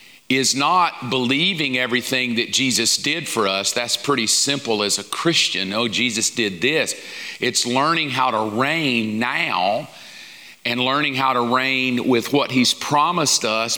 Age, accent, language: 40-59, American, English